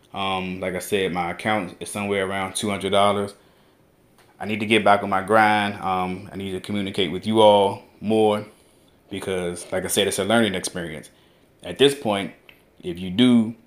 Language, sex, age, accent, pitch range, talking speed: English, male, 20-39, American, 95-110 Hz, 180 wpm